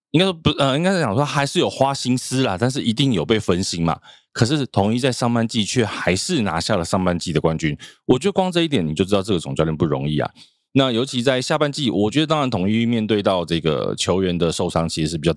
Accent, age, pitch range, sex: native, 20-39, 85-135 Hz, male